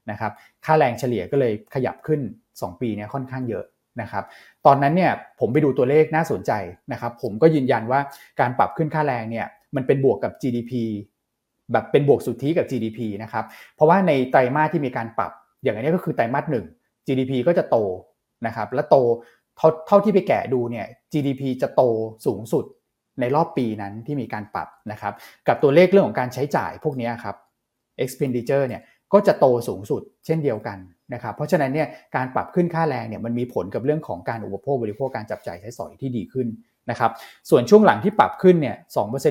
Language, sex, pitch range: Thai, male, 115-145 Hz